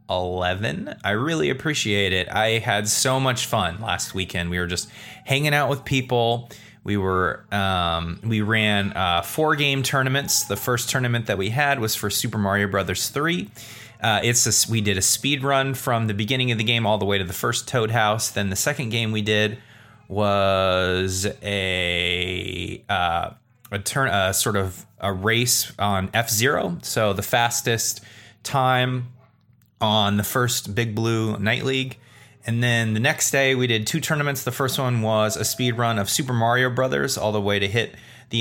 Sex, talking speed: male, 185 wpm